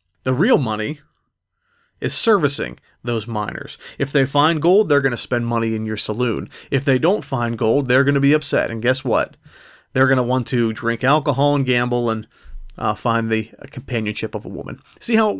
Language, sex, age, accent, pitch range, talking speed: English, male, 30-49, American, 115-140 Hz, 205 wpm